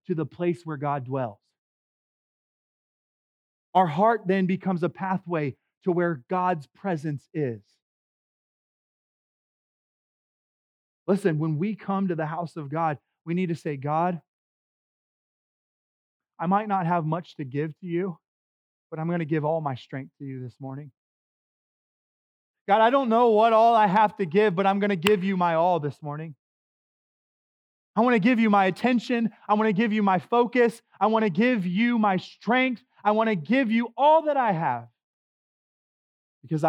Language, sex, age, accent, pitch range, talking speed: English, male, 30-49, American, 155-200 Hz, 165 wpm